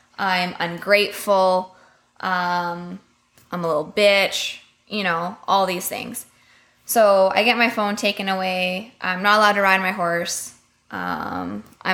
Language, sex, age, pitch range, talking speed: English, female, 20-39, 180-205 Hz, 135 wpm